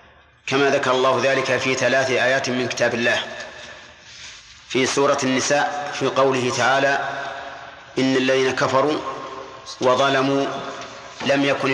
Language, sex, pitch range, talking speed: Arabic, male, 130-140 Hz, 110 wpm